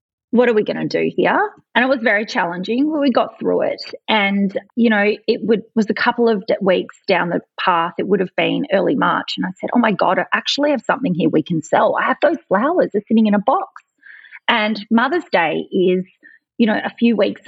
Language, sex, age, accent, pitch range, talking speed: English, female, 30-49, Australian, 190-245 Hz, 230 wpm